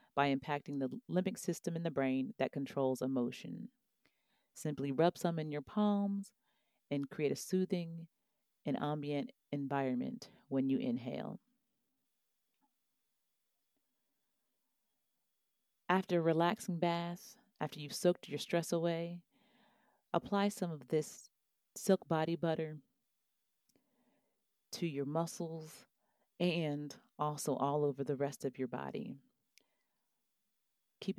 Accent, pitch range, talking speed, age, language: American, 140-175 Hz, 110 wpm, 40-59, English